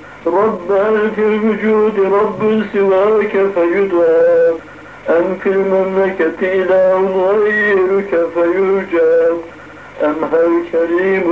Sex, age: male, 60-79